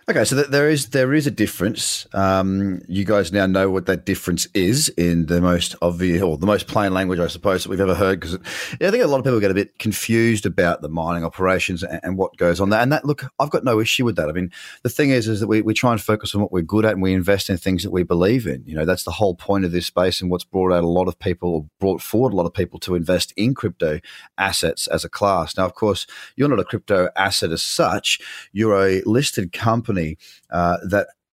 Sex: male